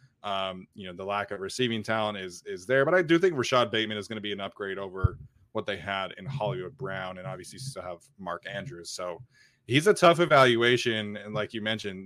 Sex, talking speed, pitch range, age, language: male, 225 wpm, 95-120 Hz, 20-39, English